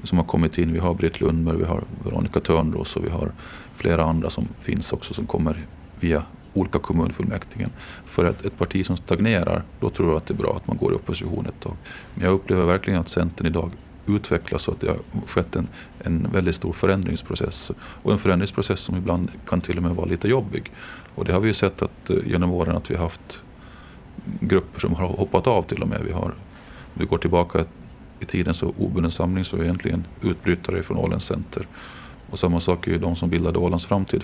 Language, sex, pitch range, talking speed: Swedish, male, 80-95 Hz, 220 wpm